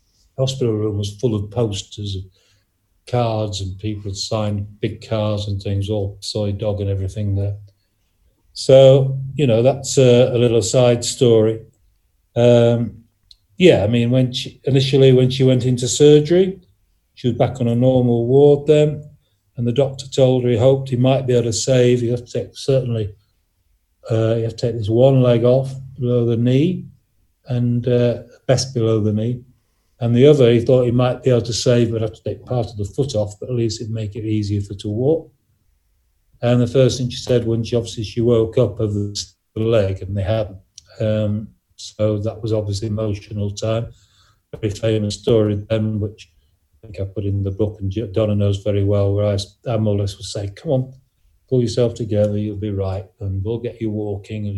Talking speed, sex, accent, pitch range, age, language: 200 wpm, male, British, 100-125 Hz, 40-59, English